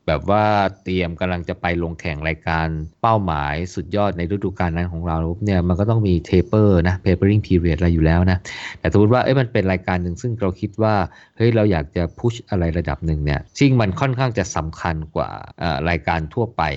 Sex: male